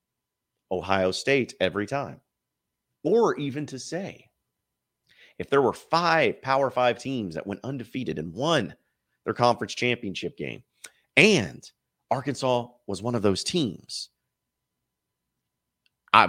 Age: 30-49